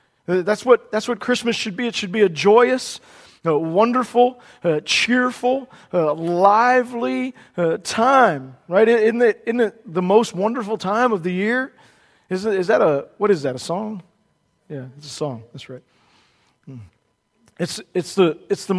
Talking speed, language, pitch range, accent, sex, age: 170 wpm, English, 170-240 Hz, American, male, 40-59